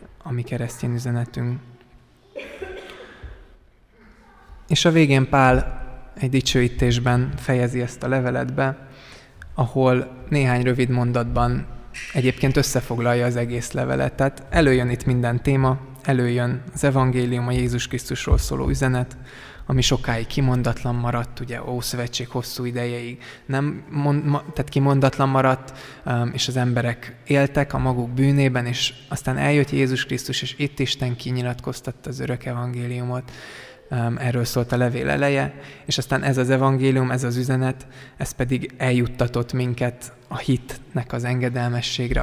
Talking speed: 120 wpm